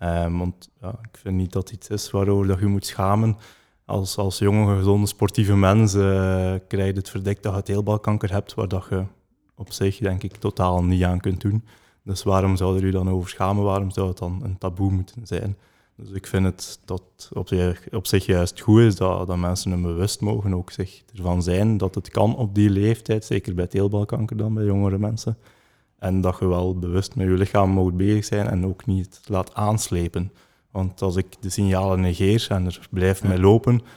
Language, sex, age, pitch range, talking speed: English, male, 20-39, 95-105 Hz, 215 wpm